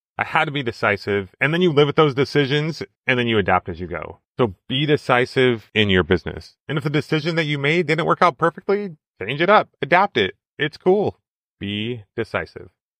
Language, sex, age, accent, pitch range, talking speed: English, male, 30-49, American, 110-150 Hz, 210 wpm